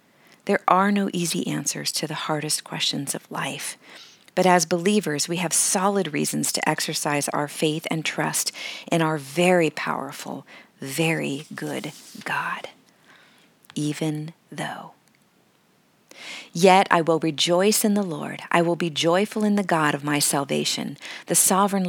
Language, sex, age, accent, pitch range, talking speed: English, female, 40-59, American, 150-190 Hz, 145 wpm